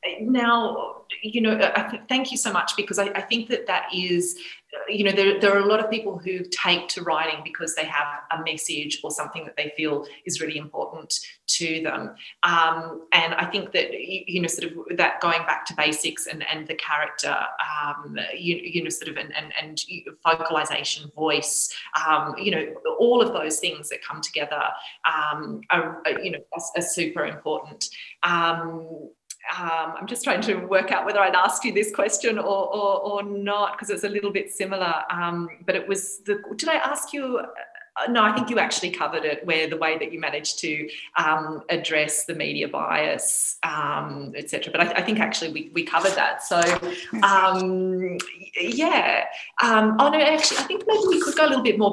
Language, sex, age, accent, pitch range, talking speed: English, female, 30-49, Australian, 160-215 Hz, 200 wpm